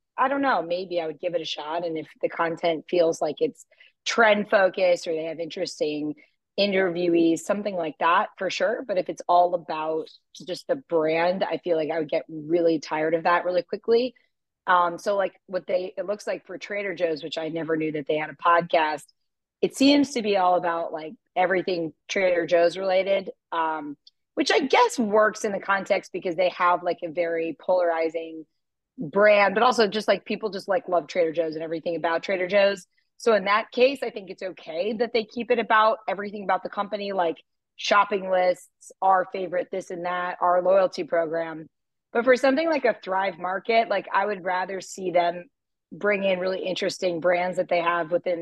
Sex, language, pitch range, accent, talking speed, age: female, English, 170-205 Hz, American, 200 wpm, 30-49